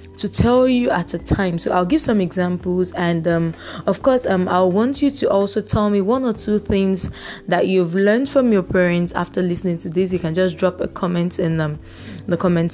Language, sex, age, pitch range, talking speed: English, female, 20-39, 175-220 Hz, 225 wpm